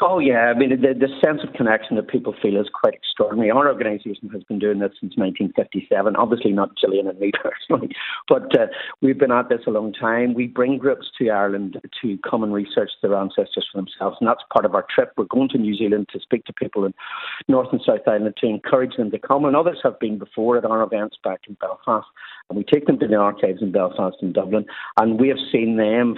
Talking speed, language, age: 235 wpm, English, 50-69